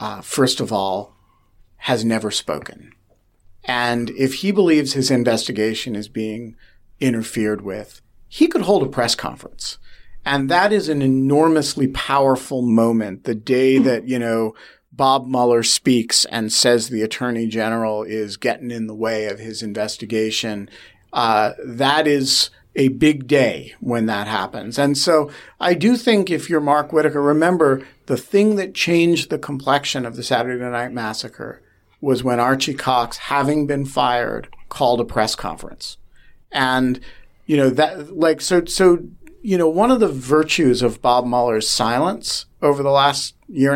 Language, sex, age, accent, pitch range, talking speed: English, male, 40-59, American, 115-155 Hz, 155 wpm